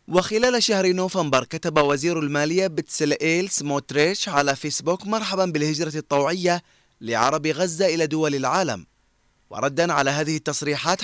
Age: 20-39